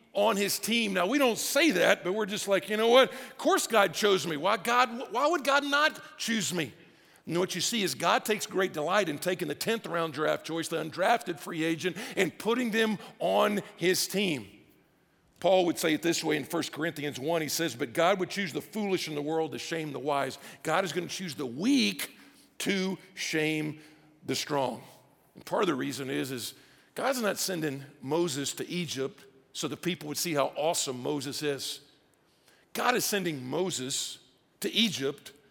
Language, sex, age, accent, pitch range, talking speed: English, male, 50-69, American, 155-205 Hz, 200 wpm